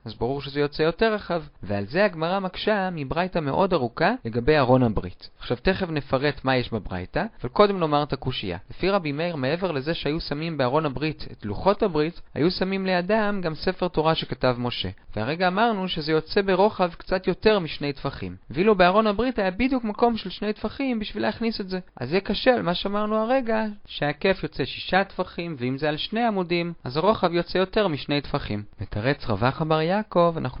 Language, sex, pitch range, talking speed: Hebrew, male, 130-190 Hz, 160 wpm